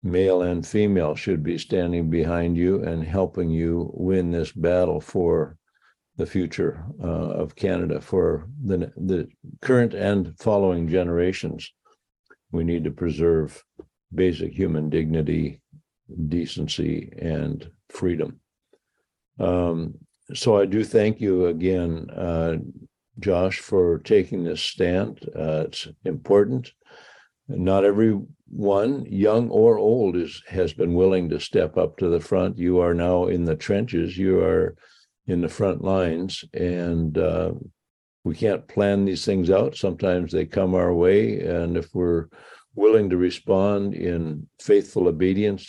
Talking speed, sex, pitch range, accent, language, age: 135 wpm, male, 85-95 Hz, American, English, 60-79